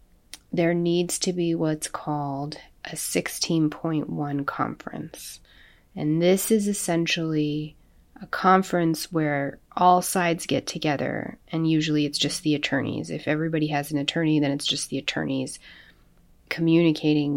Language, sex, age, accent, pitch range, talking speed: English, female, 30-49, American, 140-165 Hz, 130 wpm